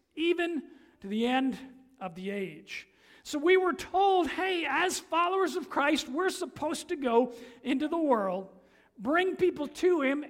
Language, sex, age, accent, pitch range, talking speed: English, male, 50-69, American, 235-315 Hz, 155 wpm